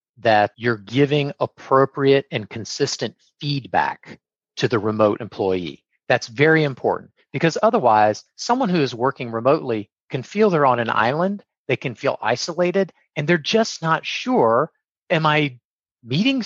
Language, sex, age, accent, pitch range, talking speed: English, male, 40-59, American, 120-170 Hz, 140 wpm